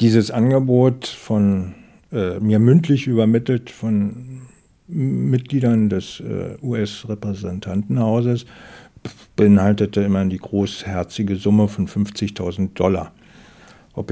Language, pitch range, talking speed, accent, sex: German, 100-125 Hz, 90 wpm, German, male